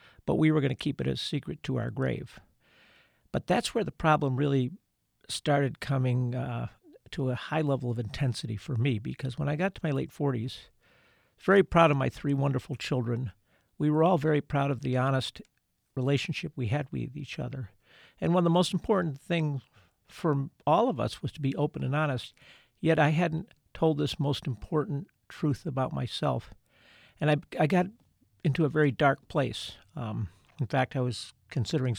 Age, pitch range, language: 50-69, 125-150 Hz, English